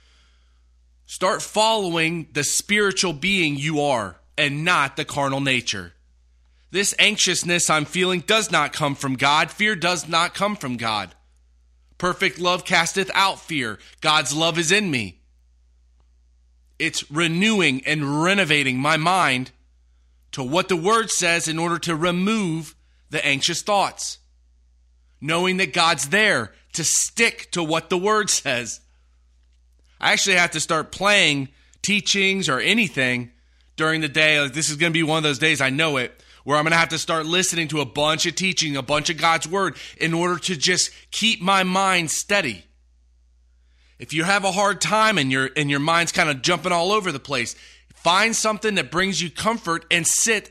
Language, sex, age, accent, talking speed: English, male, 30-49, American, 170 wpm